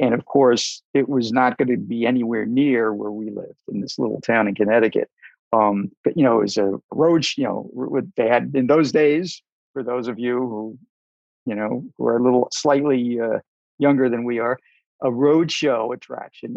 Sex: male